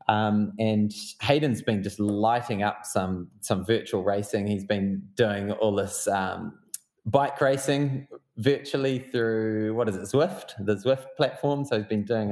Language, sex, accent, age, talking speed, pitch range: English, male, Australian, 20-39, 155 wpm, 105-120 Hz